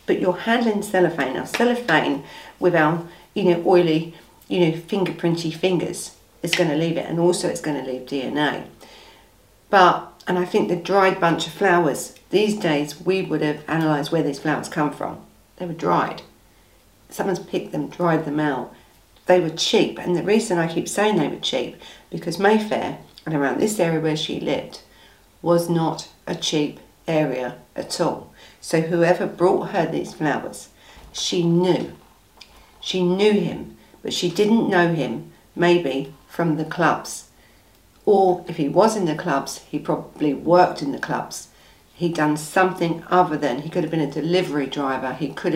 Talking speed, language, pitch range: 175 wpm, English, 150-180 Hz